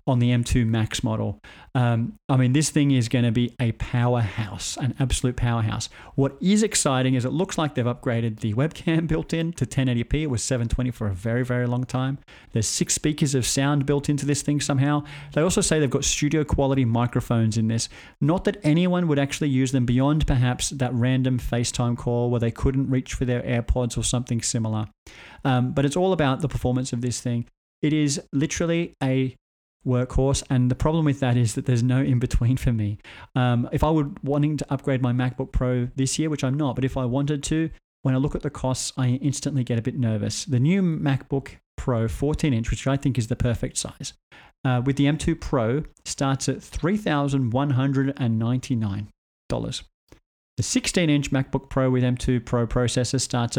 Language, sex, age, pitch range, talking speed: English, male, 40-59, 120-145 Hz, 205 wpm